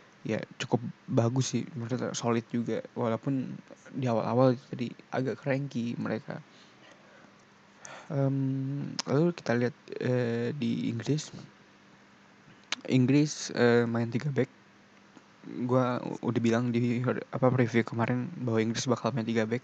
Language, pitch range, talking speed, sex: Indonesian, 115-130 Hz, 115 wpm, male